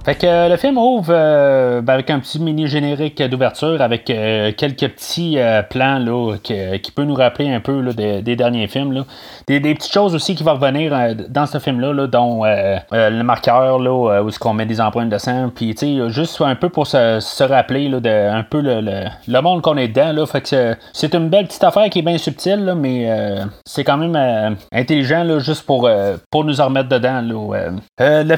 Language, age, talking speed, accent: French, 30-49, 245 wpm, Canadian